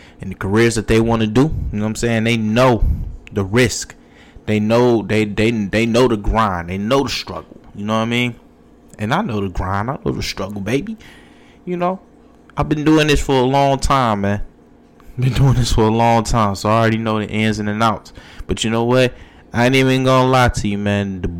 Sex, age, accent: male, 20-39, American